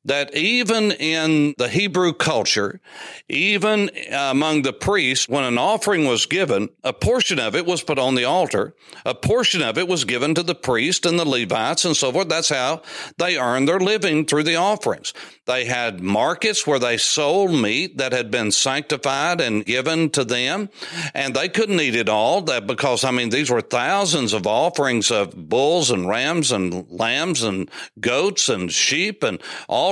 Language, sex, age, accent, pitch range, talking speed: English, male, 60-79, American, 130-165 Hz, 180 wpm